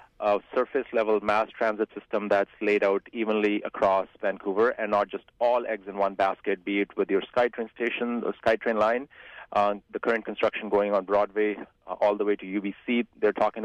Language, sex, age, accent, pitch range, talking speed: English, male, 30-49, Indian, 100-115 Hz, 190 wpm